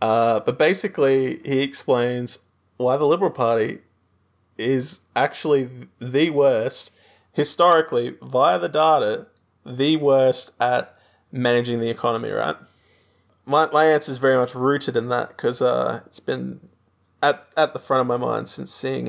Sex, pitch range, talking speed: male, 115-135 Hz, 145 wpm